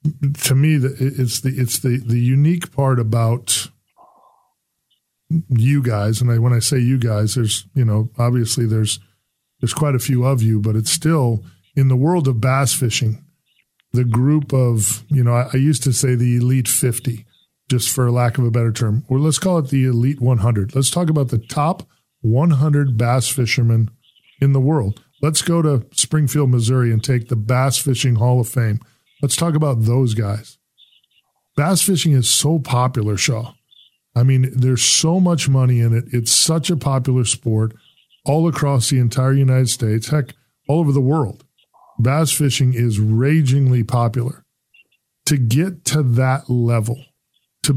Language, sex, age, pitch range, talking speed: English, male, 40-59, 120-140 Hz, 170 wpm